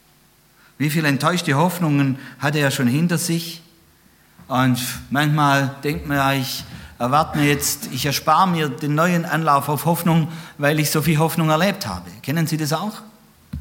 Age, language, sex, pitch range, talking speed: 50-69, German, male, 115-165 Hz, 170 wpm